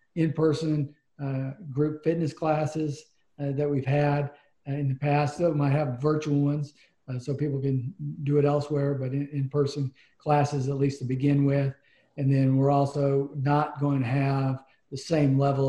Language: English